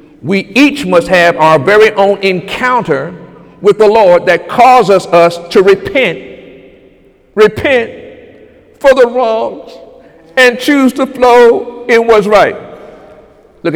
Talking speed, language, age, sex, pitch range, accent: 120 wpm, English, 50-69, male, 175-255 Hz, American